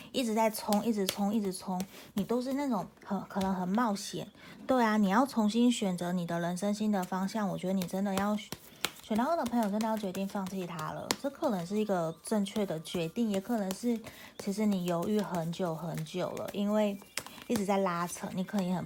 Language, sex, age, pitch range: Chinese, female, 30-49, 180-220 Hz